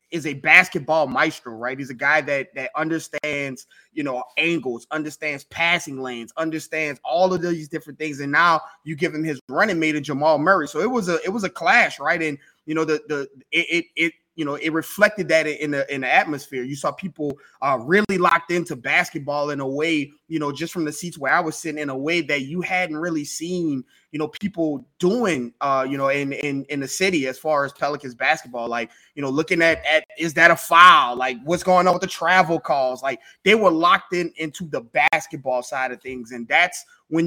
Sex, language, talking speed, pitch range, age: male, English, 225 wpm, 135-165 Hz, 20-39